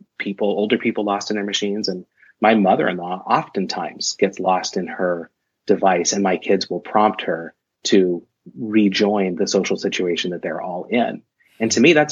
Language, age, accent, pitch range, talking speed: English, 30-49, American, 95-110 Hz, 175 wpm